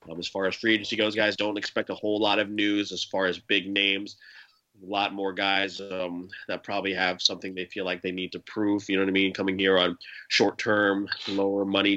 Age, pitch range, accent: 20-39, 90-105 Hz, American